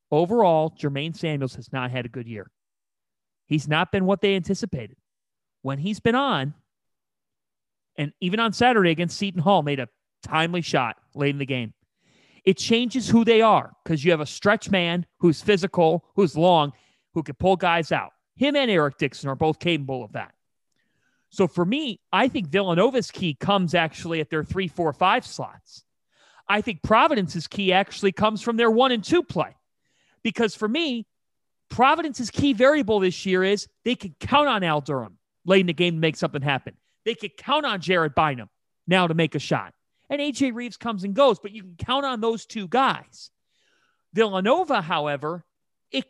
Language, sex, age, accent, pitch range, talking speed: English, male, 30-49, American, 160-230 Hz, 185 wpm